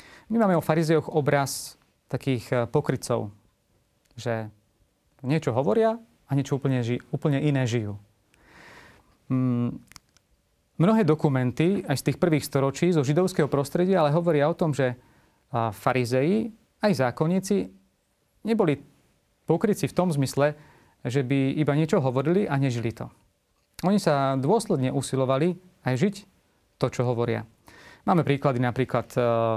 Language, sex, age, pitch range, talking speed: Slovak, male, 30-49, 120-150 Hz, 120 wpm